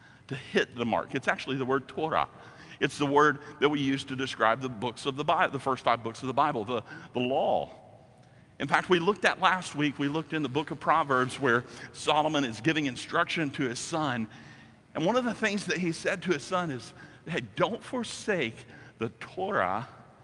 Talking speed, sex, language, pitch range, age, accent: 210 wpm, male, English, 130-185 Hz, 50-69, American